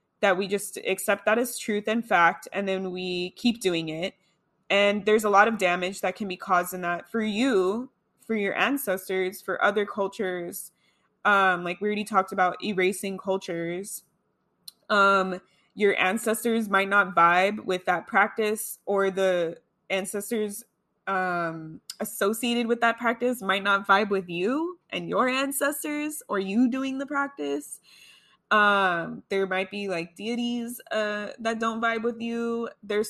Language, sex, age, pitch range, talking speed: English, female, 20-39, 185-225 Hz, 155 wpm